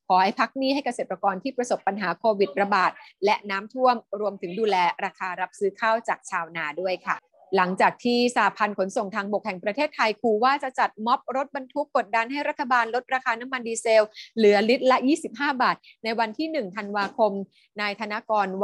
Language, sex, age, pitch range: Thai, female, 20-39, 195-245 Hz